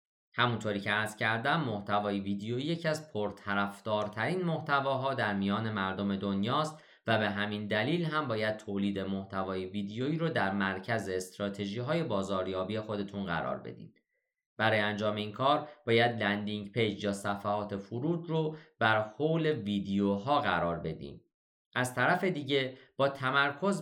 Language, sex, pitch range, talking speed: Persian, male, 100-140 Hz, 130 wpm